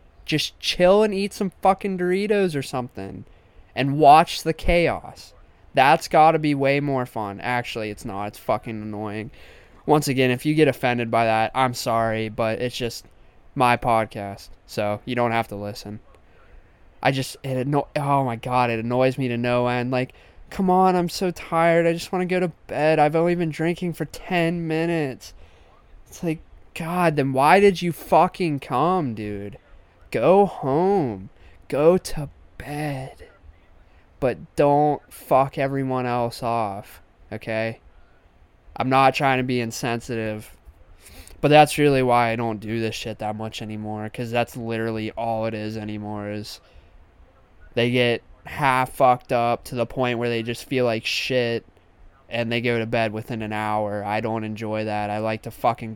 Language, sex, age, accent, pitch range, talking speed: English, male, 20-39, American, 105-140 Hz, 165 wpm